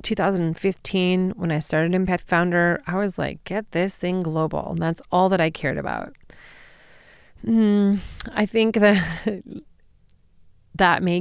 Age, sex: 30-49, female